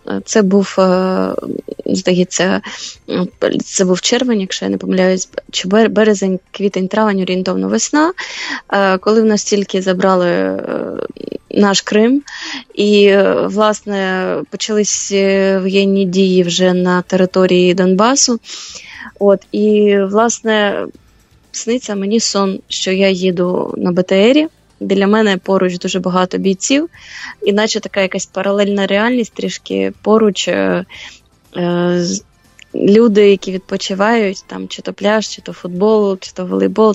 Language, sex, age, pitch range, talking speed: English, female, 20-39, 185-210 Hz, 115 wpm